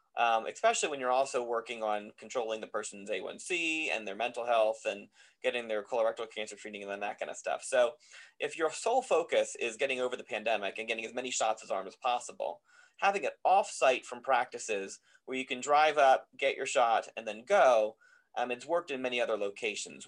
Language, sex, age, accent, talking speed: English, male, 30-49, American, 205 wpm